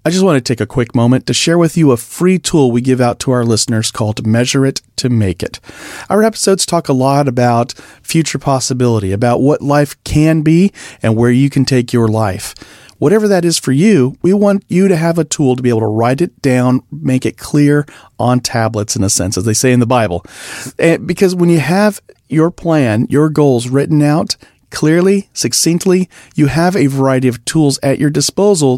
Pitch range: 120-160 Hz